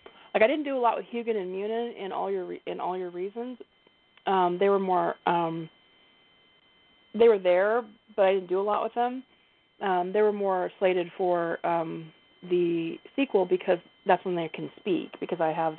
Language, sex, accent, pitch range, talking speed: English, female, American, 180-235 Hz, 200 wpm